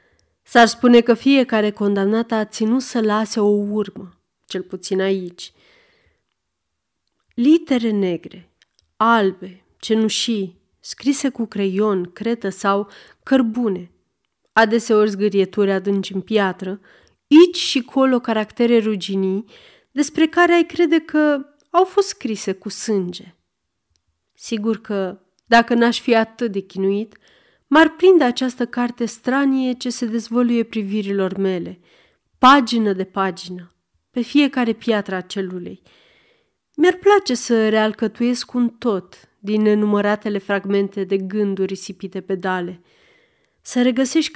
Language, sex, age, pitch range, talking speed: Romanian, female, 30-49, 195-250 Hz, 115 wpm